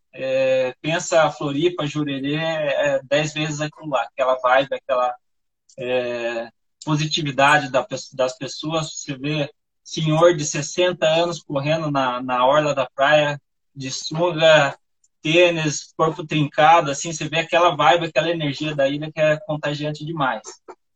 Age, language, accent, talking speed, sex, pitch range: 20-39, Portuguese, Brazilian, 135 wpm, male, 140-170 Hz